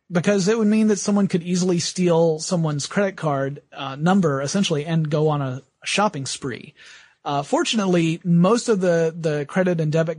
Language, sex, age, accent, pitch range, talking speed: English, male, 30-49, American, 145-185 Hz, 175 wpm